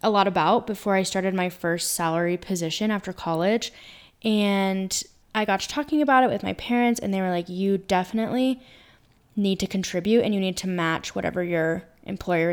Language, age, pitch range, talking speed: English, 10-29, 180-215 Hz, 185 wpm